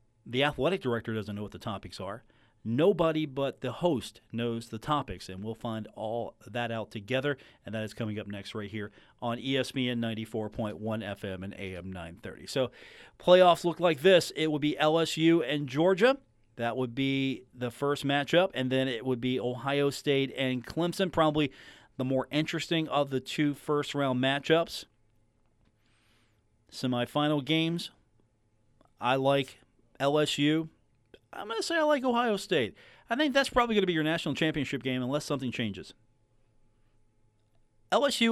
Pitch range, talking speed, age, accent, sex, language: 110-155 Hz, 160 wpm, 40-59, American, male, English